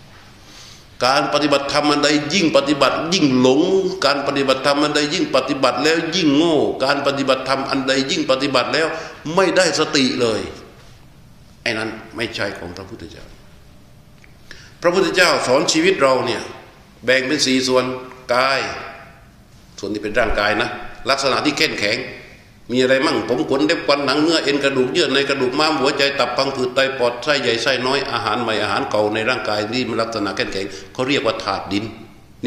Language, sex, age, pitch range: Thai, male, 60-79, 120-145 Hz